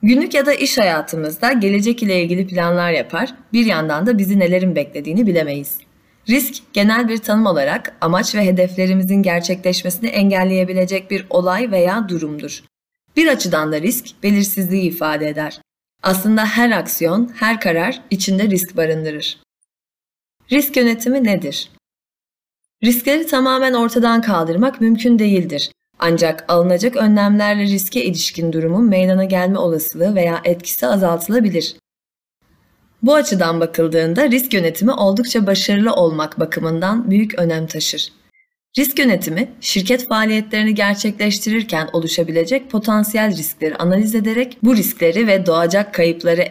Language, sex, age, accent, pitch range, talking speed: Turkish, female, 30-49, native, 170-230 Hz, 120 wpm